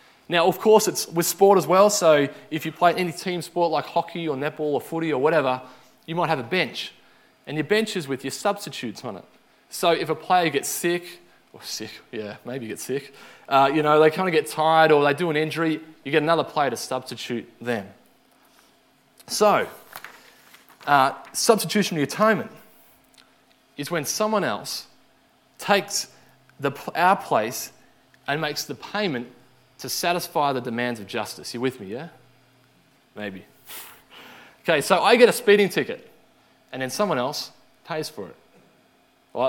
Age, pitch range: 20-39, 140-200 Hz